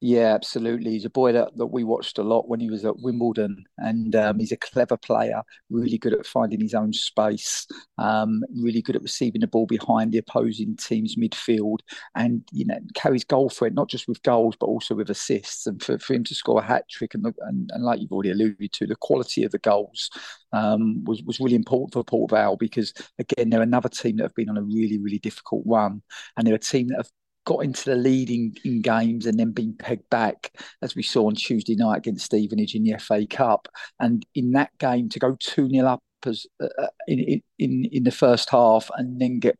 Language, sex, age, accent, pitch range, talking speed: English, male, 40-59, British, 110-130 Hz, 225 wpm